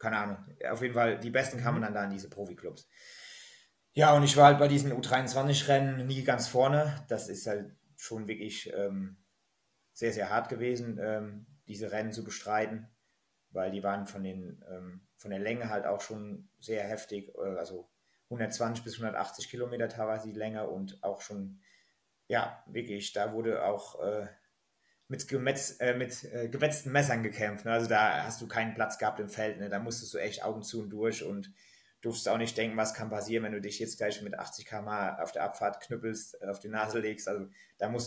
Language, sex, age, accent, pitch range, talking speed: German, male, 30-49, German, 105-125 Hz, 190 wpm